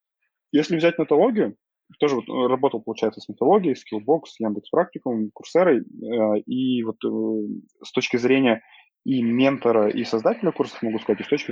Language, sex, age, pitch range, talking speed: Russian, male, 20-39, 110-135 Hz, 135 wpm